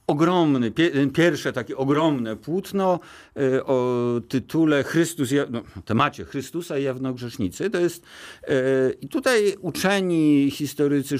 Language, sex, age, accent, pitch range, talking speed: Polish, male, 50-69, native, 110-155 Hz, 95 wpm